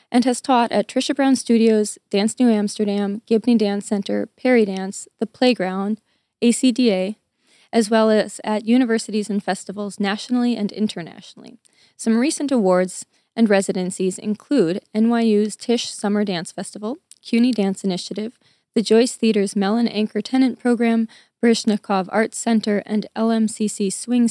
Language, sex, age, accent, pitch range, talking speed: English, female, 20-39, American, 205-235 Hz, 135 wpm